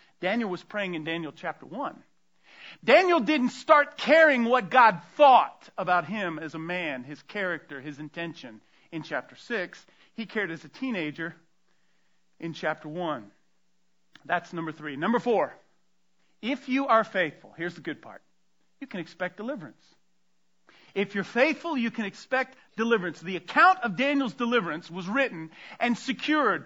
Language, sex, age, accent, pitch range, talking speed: English, male, 40-59, American, 175-260 Hz, 155 wpm